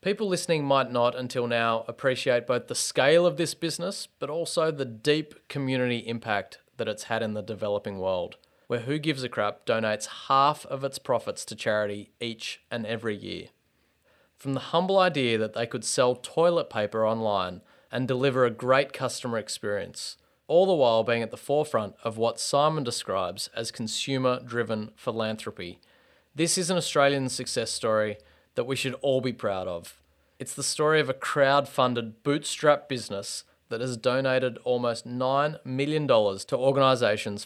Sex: male